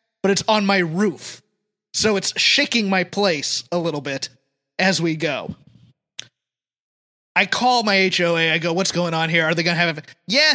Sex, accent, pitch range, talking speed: male, American, 190-250 Hz, 190 wpm